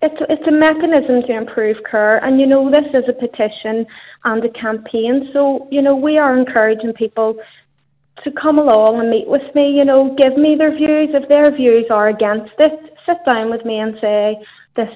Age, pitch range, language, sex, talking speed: 30-49, 215-255 Hz, English, female, 195 wpm